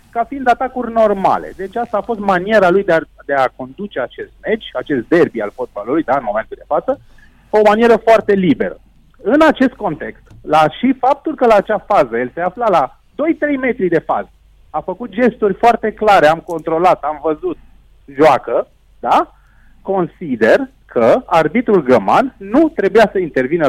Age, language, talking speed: 30-49, Romanian, 170 wpm